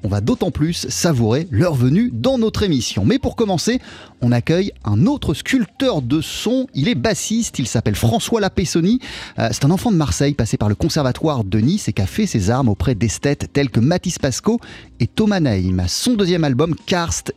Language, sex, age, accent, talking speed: French, male, 30-49, French, 195 wpm